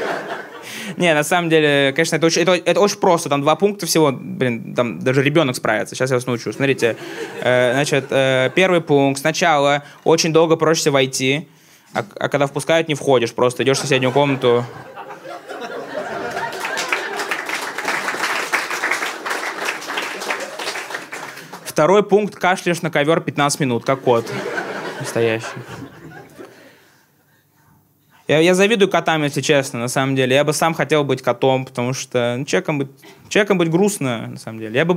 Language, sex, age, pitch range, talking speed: Russian, male, 20-39, 135-170 Hz, 140 wpm